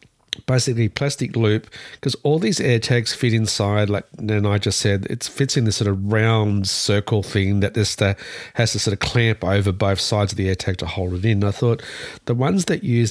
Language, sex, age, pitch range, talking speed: English, male, 50-69, 100-120 Hz, 230 wpm